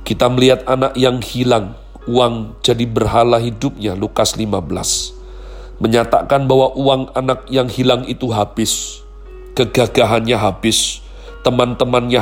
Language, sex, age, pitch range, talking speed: Indonesian, male, 40-59, 110-130 Hz, 110 wpm